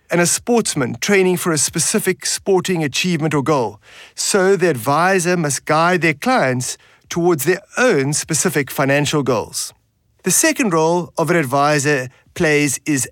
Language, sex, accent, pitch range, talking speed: English, male, German, 140-190 Hz, 145 wpm